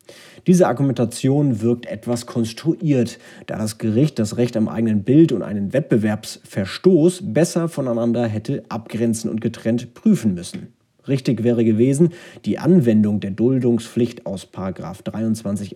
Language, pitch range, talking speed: German, 105-135 Hz, 125 wpm